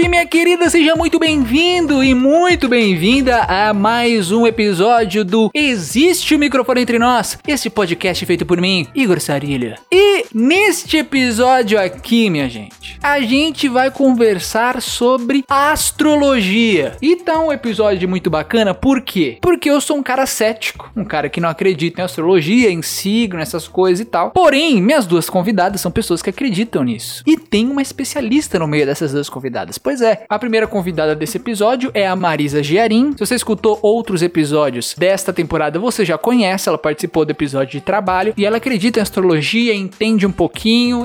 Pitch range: 180-260 Hz